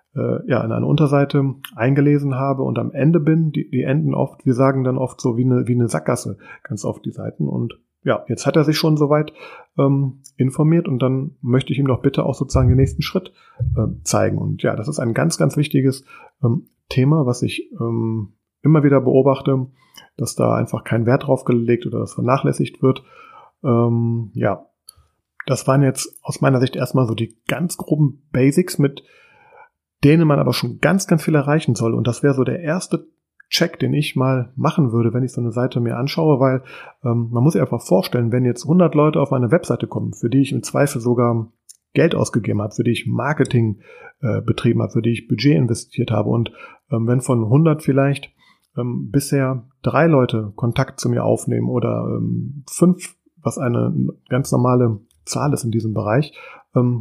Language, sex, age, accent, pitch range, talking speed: German, male, 30-49, German, 120-145 Hz, 195 wpm